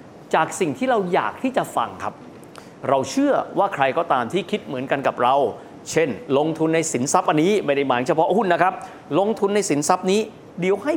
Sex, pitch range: male, 150-210 Hz